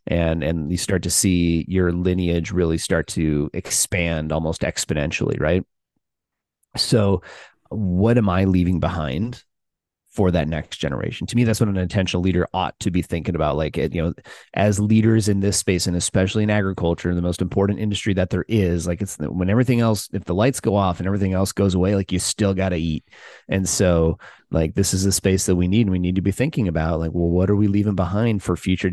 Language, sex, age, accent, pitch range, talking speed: English, male, 30-49, American, 85-100 Hz, 215 wpm